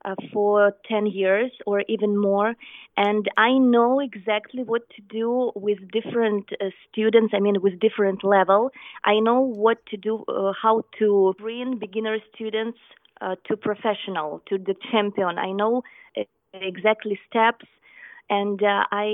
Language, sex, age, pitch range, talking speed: English, female, 20-39, 200-225 Hz, 150 wpm